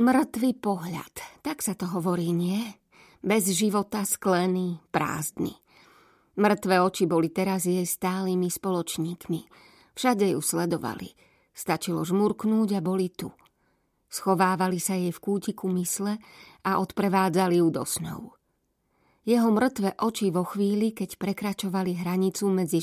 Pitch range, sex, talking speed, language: 175-200 Hz, female, 120 wpm, Slovak